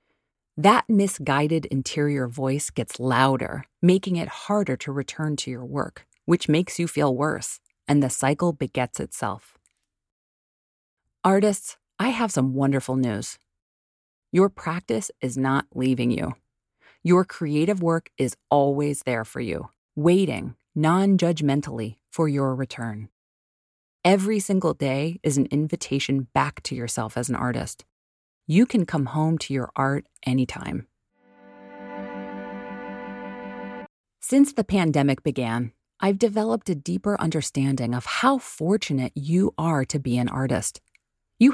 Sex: female